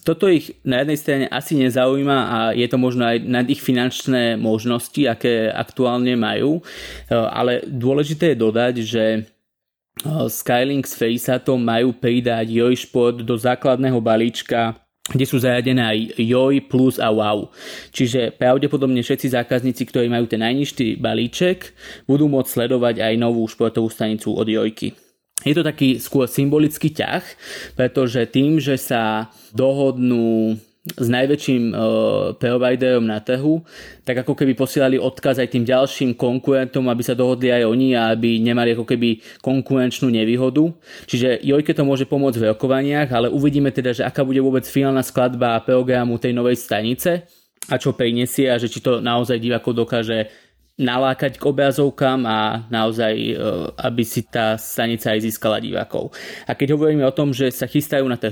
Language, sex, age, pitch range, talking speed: Slovak, male, 20-39, 115-135 Hz, 155 wpm